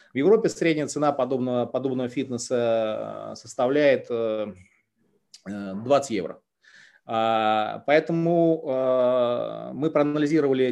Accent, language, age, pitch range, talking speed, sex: native, Russian, 30-49, 115-150 Hz, 75 wpm, male